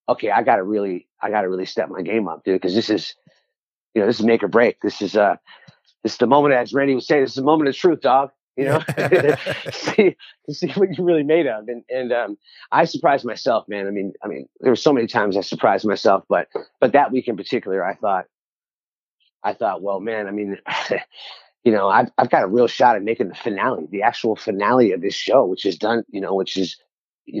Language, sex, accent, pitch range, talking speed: English, male, American, 100-140 Hz, 245 wpm